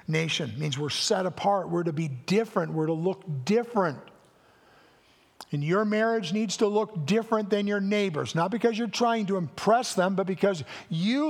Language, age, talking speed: English, 50-69, 180 wpm